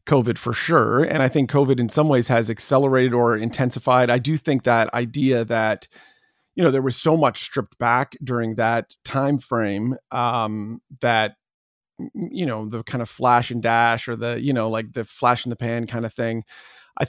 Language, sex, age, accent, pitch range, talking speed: English, male, 40-59, American, 115-140 Hz, 195 wpm